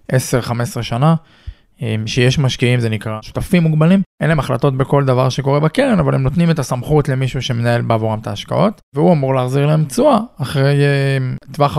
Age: 20-39